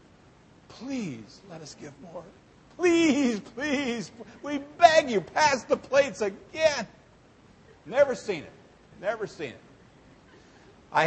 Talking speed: 115 wpm